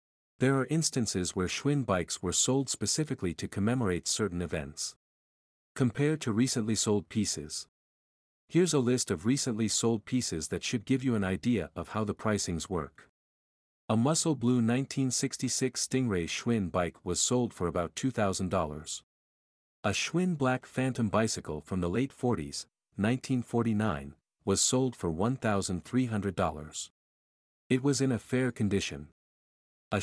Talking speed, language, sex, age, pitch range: 140 wpm, English, male, 50-69, 85-130 Hz